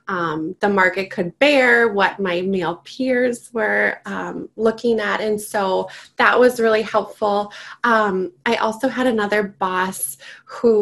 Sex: female